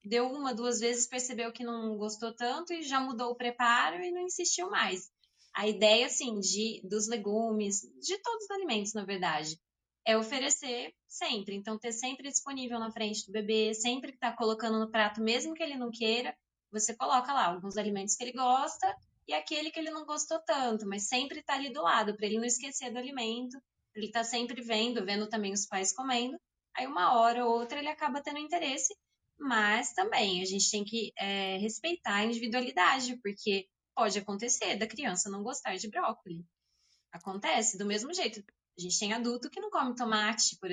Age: 10-29